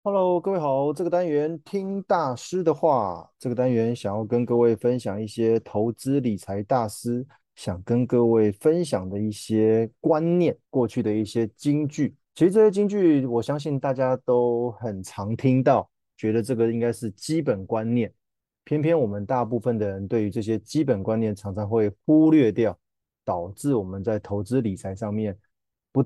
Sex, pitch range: male, 105-140 Hz